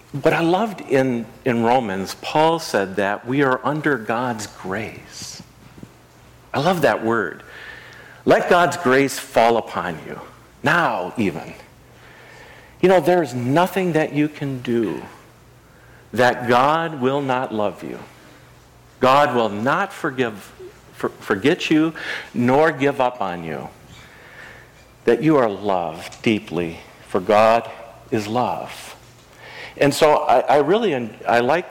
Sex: male